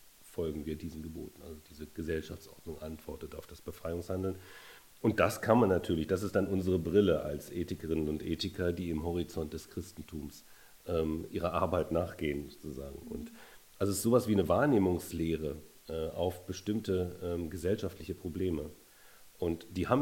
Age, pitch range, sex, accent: 40-59, 80-95 Hz, male, German